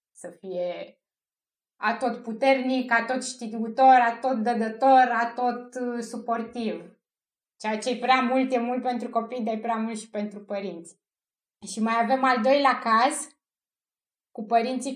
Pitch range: 215-250 Hz